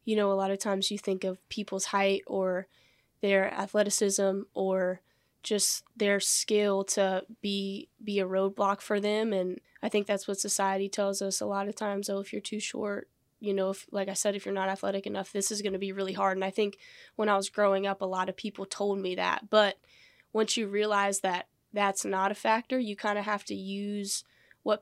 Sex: female